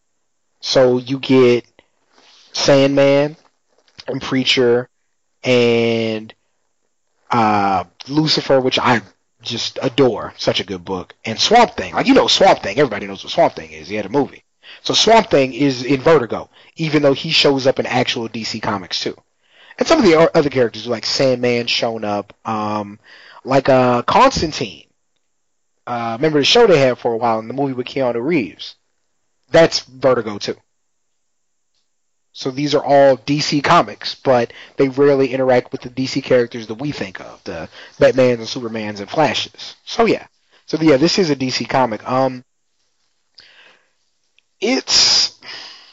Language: English